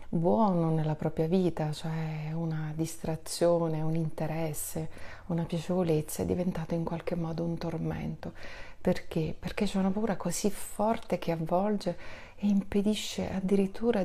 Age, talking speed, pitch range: 30-49, 130 wpm, 160-185 Hz